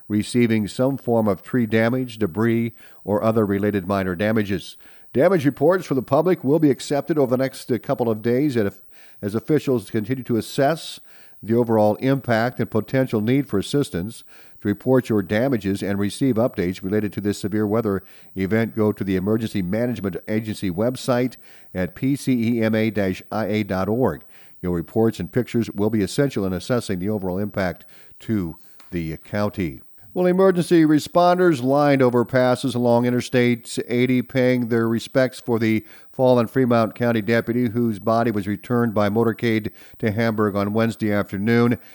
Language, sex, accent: English, male, American